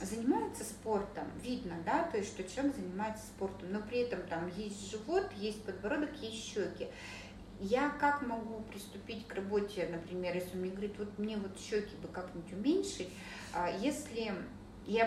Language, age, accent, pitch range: Russian, 30-49, native, 190-245 Hz